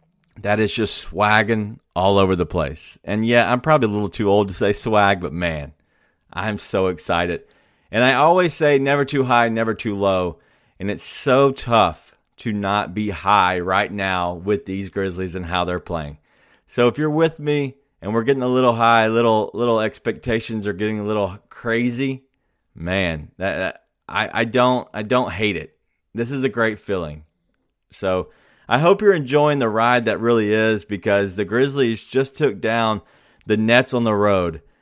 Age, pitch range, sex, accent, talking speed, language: 30-49, 100-130 Hz, male, American, 185 wpm, English